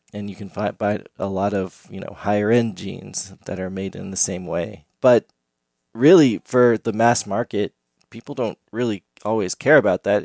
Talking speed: 180 wpm